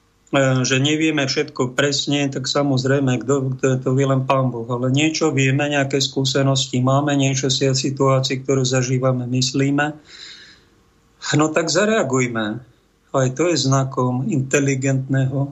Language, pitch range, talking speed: Slovak, 130-150 Hz, 130 wpm